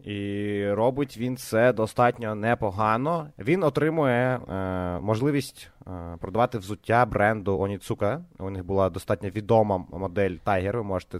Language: Ukrainian